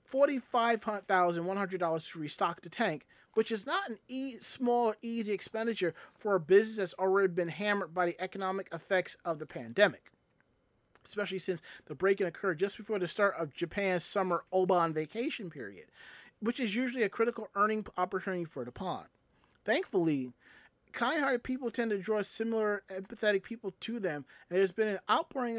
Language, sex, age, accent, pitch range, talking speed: English, male, 30-49, American, 175-220 Hz, 160 wpm